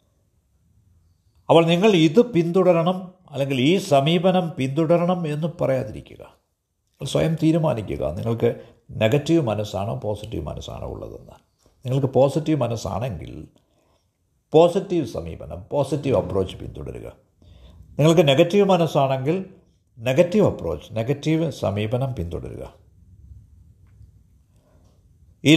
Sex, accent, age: male, native, 50-69